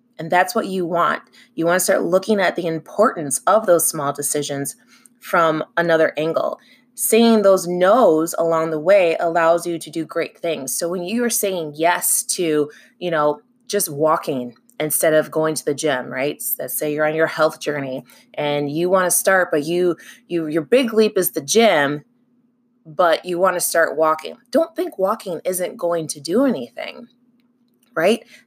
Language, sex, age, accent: English, female, 20-39, American